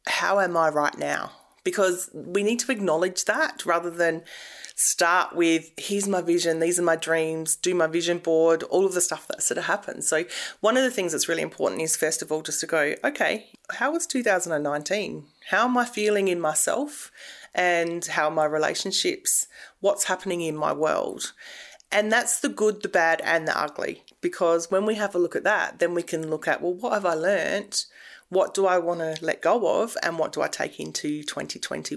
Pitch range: 165-210 Hz